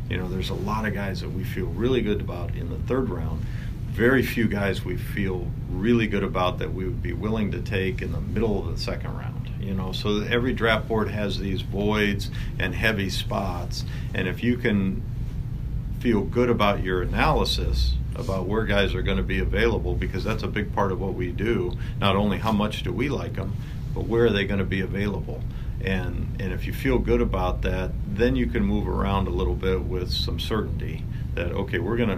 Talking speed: 215 wpm